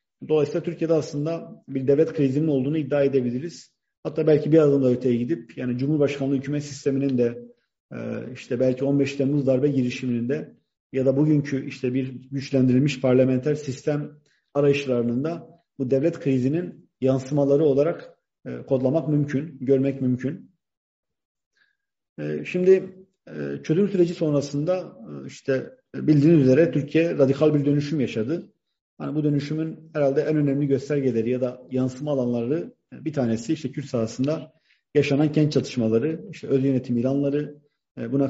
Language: Turkish